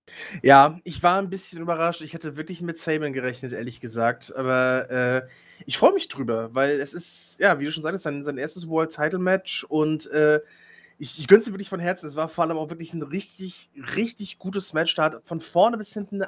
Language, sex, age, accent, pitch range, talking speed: German, male, 20-39, German, 130-170 Hz, 225 wpm